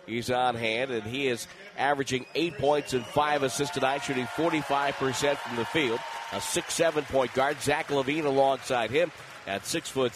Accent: American